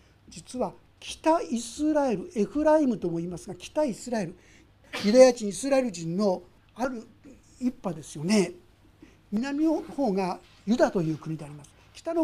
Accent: native